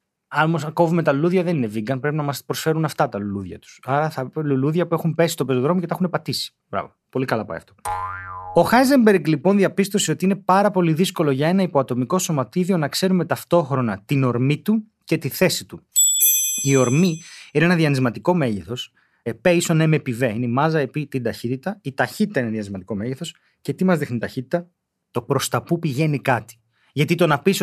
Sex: male